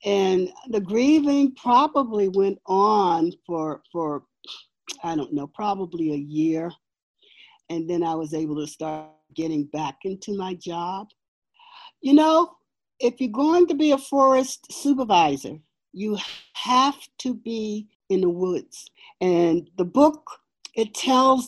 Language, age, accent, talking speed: English, 60-79, American, 135 wpm